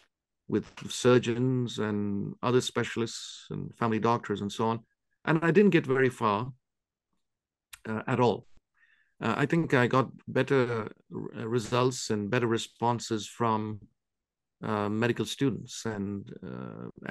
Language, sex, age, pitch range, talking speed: English, male, 50-69, 110-130 Hz, 125 wpm